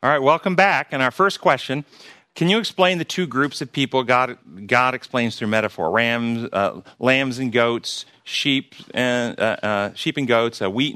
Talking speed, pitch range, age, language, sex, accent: 190 wpm, 105-140 Hz, 40-59, English, male, American